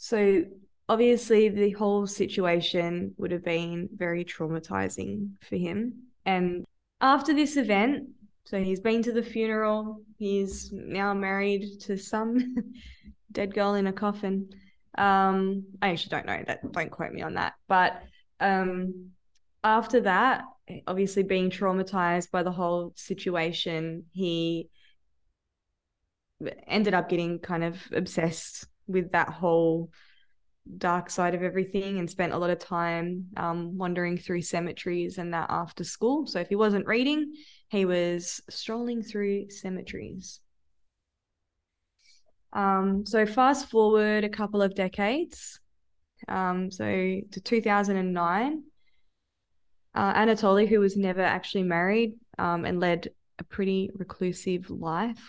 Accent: Australian